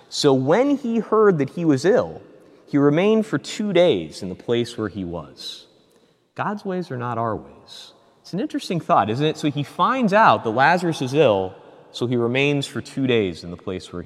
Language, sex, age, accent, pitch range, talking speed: English, male, 30-49, American, 130-215 Hz, 210 wpm